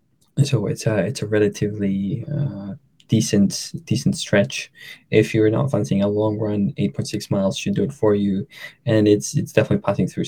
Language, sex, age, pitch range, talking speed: English, male, 20-39, 100-140 Hz, 185 wpm